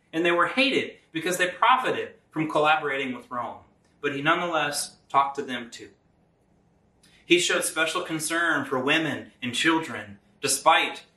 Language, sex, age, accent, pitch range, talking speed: English, male, 30-49, American, 135-205 Hz, 145 wpm